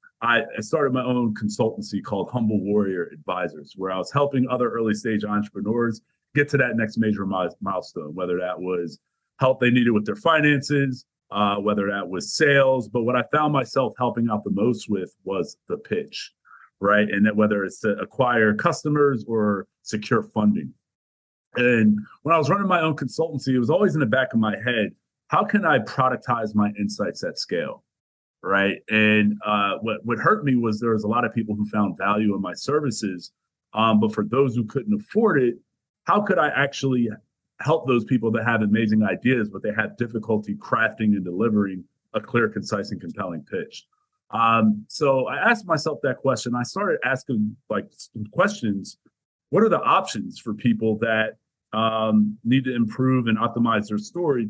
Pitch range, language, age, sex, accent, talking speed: 105-130 Hz, English, 30-49, male, American, 185 wpm